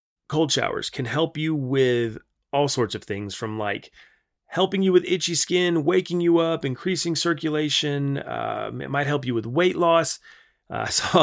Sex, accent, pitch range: male, American, 120-165 Hz